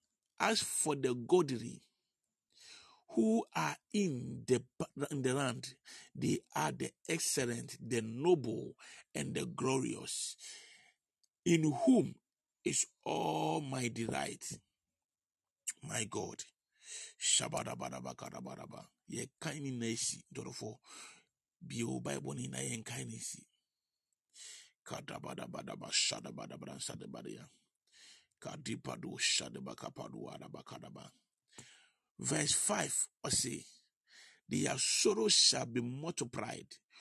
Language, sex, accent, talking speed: English, male, Nigerian, 85 wpm